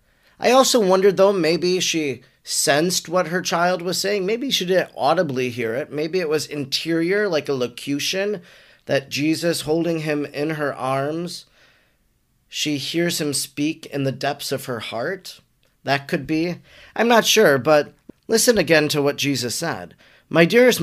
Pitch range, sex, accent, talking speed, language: 135-170 Hz, male, American, 165 wpm, English